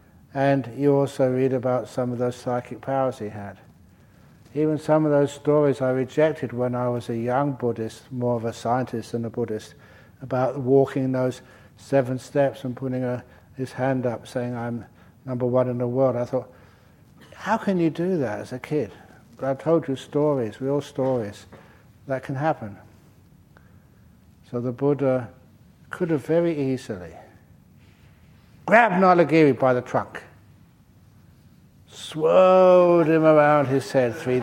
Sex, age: male, 60-79